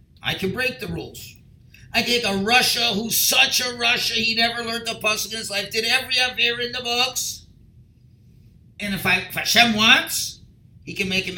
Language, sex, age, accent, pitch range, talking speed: English, male, 50-69, American, 120-195 Hz, 195 wpm